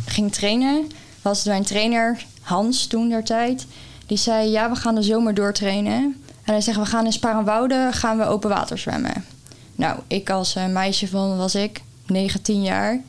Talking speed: 175 wpm